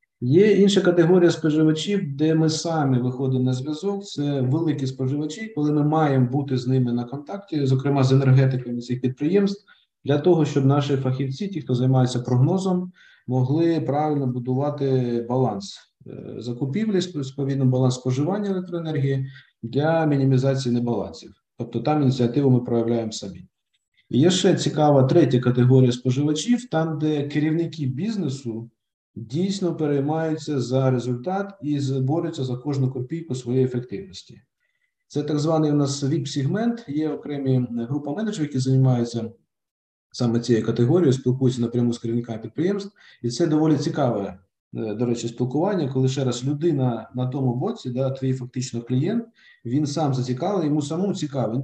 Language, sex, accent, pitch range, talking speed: Ukrainian, male, native, 125-160 Hz, 140 wpm